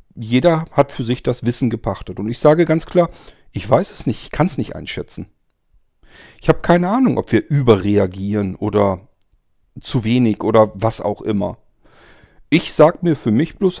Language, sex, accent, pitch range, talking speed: German, male, German, 100-135 Hz, 180 wpm